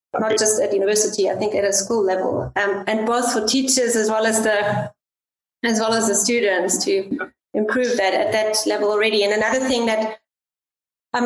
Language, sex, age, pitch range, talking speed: English, female, 30-49, 220-255 Hz, 190 wpm